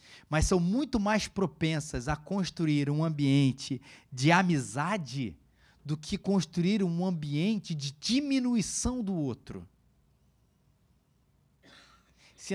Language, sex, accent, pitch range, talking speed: Portuguese, male, Brazilian, 135-210 Hz, 100 wpm